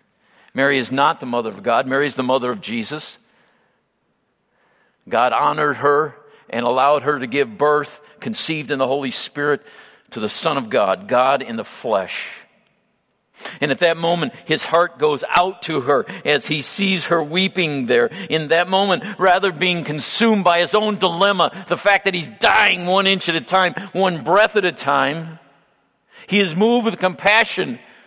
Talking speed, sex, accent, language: 175 wpm, male, American, English